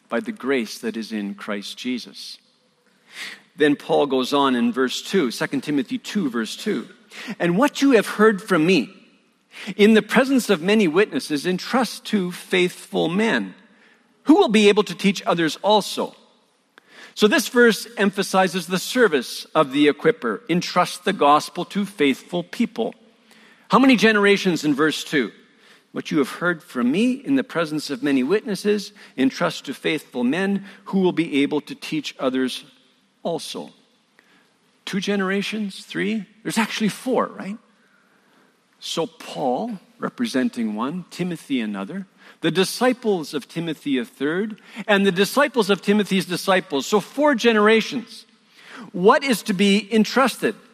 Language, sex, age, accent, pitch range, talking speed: English, male, 50-69, American, 175-230 Hz, 145 wpm